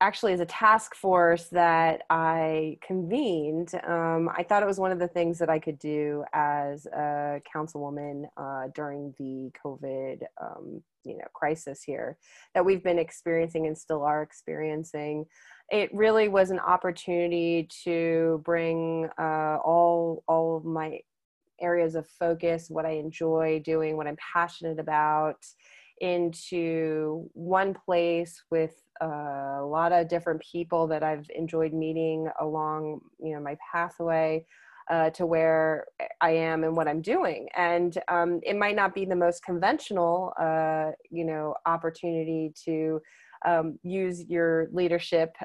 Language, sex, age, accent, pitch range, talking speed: English, female, 20-39, American, 155-175 Hz, 145 wpm